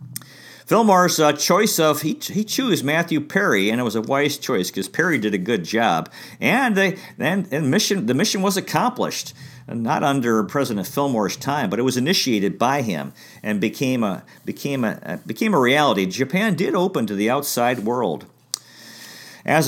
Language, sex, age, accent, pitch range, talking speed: English, male, 50-69, American, 115-175 Hz, 175 wpm